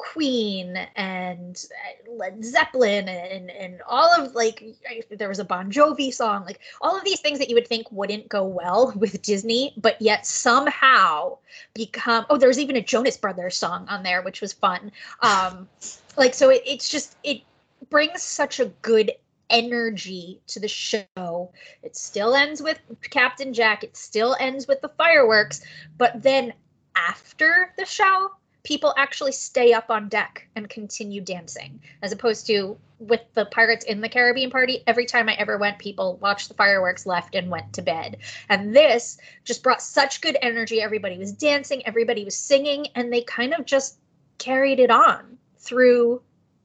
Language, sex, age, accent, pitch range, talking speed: English, female, 20-39, American, 205-270 Hz, 170 wpm